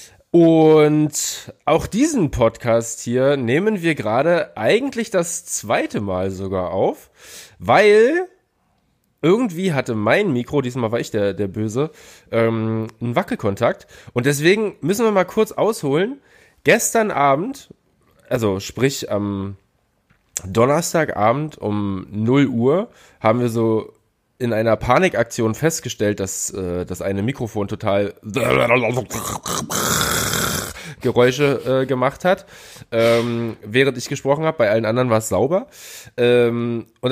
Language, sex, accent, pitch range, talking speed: German, male, German, 110-160 Hz, 120 wpm